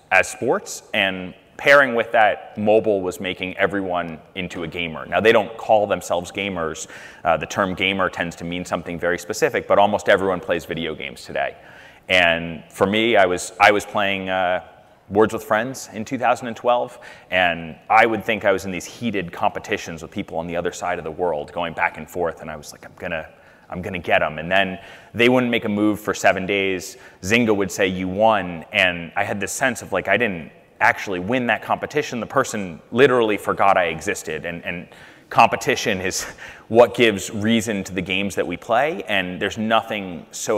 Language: English